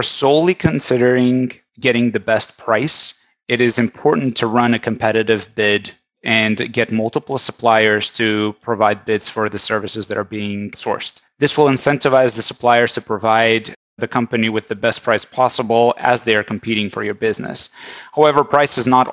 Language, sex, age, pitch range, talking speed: English, male, 30-49, 110-125 Hz, 165 wpm